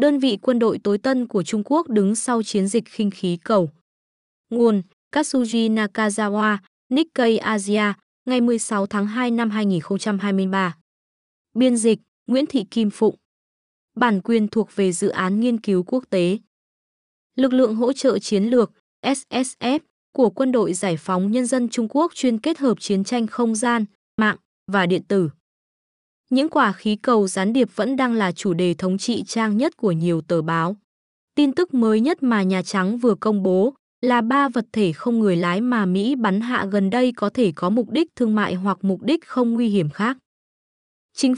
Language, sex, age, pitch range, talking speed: Vietnamese, female, 20-39, 200-250 Hz, 185 wpm